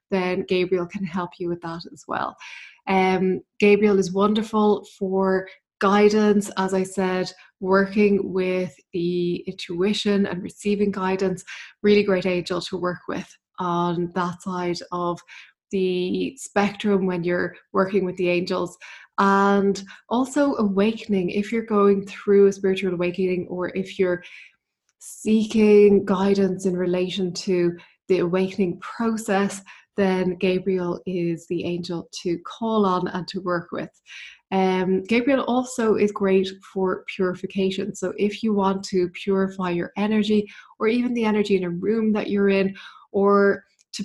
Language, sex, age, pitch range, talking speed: English, female, 20-39, 185-205 Hz, 140 wpm